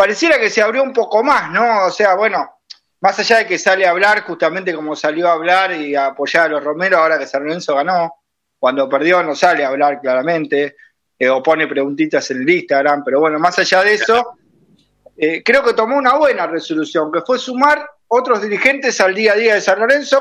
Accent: Argentinian